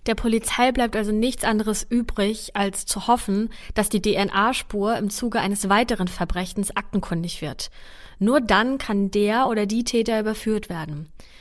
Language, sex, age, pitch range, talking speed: German, female, 20-39, 205-240 Hz, 155 wpm